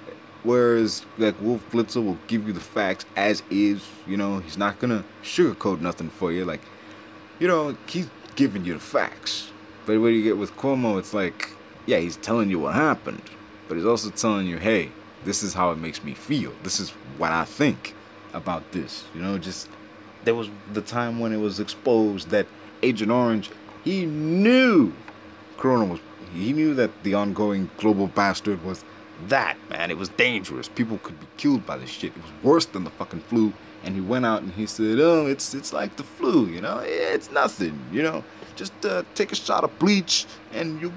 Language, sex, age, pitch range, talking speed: English, male, 30-49, 100-140 Hz, 200 wpm